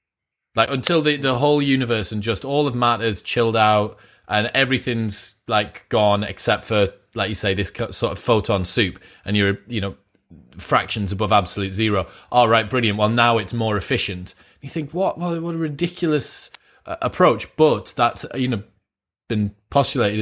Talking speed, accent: 170 wpm, British